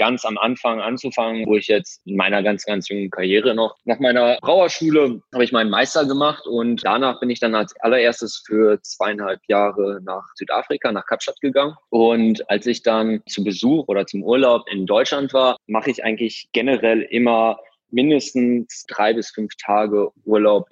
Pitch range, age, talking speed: 100-125 Hz, 20-39, 175 wpm